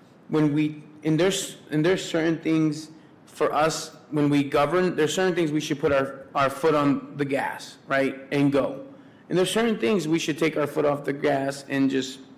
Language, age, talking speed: English, 30-49, 205 wpm